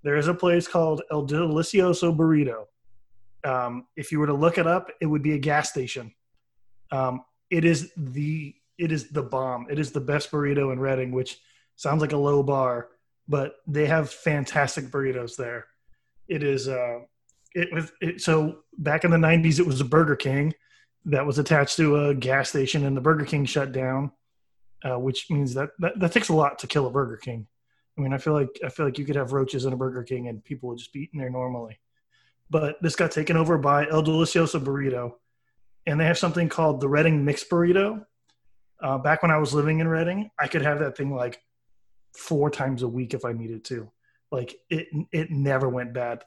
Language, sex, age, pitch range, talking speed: English, male, 30-49, 125-155 Hz, 210 wpm